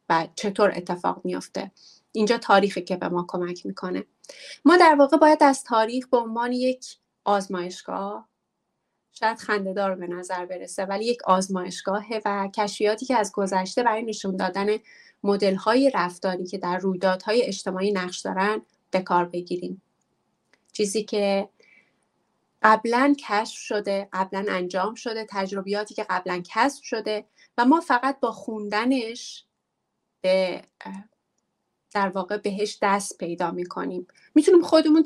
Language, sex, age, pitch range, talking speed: English, female, 30-49, 190-245 Hz, 125 wpm